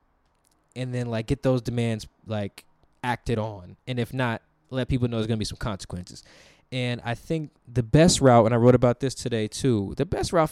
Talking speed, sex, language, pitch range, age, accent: 210 wpm, male, English, 110-140 Hz, 20-39, American